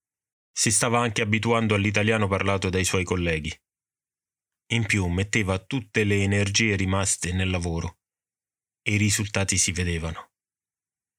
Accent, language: native, Italian